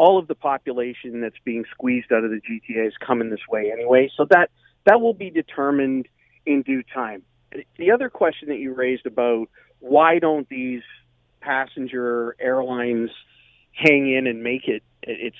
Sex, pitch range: male, 120-165 Hz